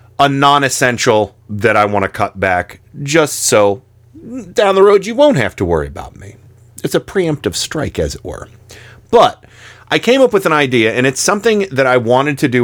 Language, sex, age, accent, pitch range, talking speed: English, male, 40-59, American, 105-130 Hz, 200 wpm